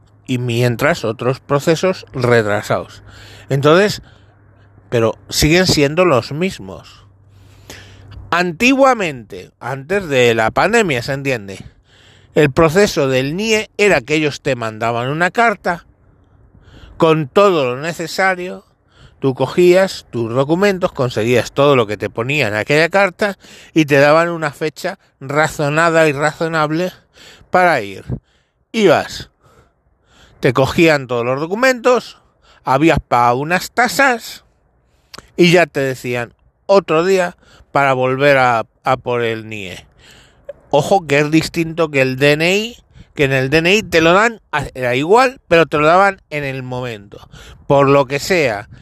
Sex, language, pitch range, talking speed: male, Spanish, 125-175 Hz, 130 wpm